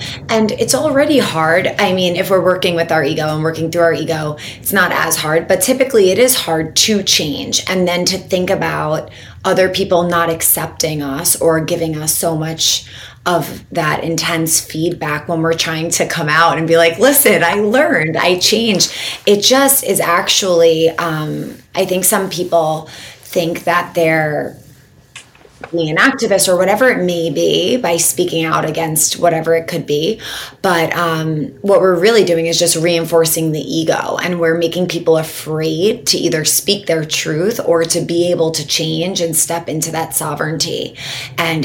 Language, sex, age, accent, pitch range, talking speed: English, female, 20-39, American, 155-175 Hz, 175 wpm